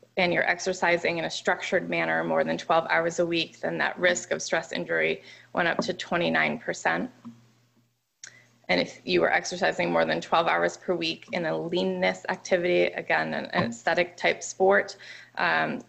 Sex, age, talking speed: female, 20-39, 160 wpm